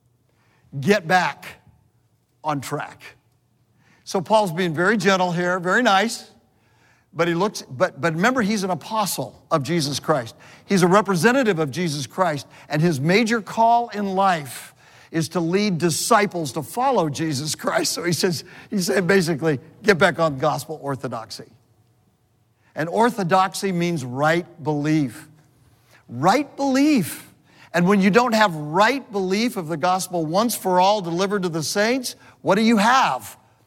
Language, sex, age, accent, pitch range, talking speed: English, male, 60-79, American, 130-190 Hz, 150 wpm